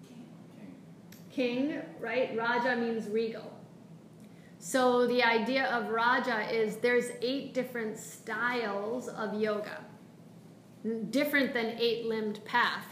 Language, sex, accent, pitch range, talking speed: English, female, American, 210-240 Hz, 100 wpm